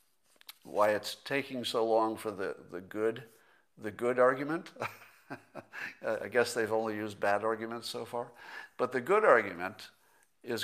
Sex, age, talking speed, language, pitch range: male, 60-79, 145 wpm, English, 105-135 Hz